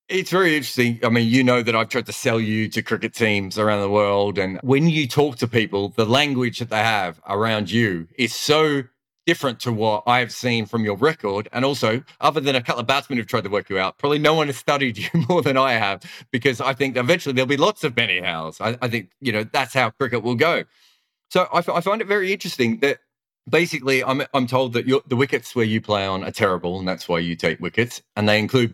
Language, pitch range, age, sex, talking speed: English, 110-150 Hz, 30-49, male, 245 wpm